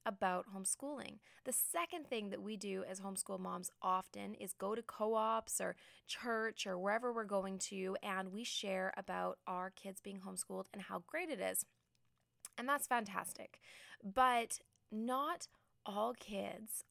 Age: 20-39